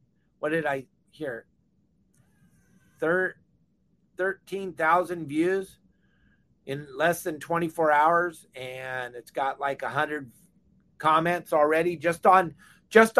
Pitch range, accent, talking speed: 160-195 Hz, American, 90 wpm